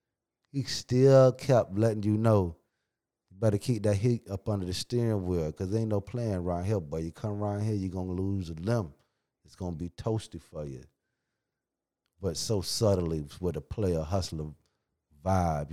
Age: 30-49